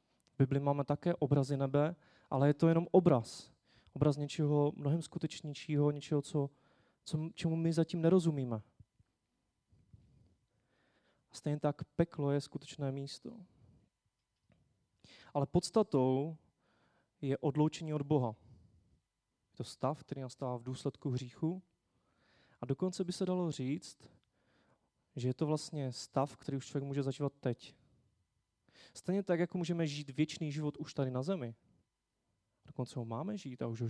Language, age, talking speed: Czech, 20-39, 135 wpm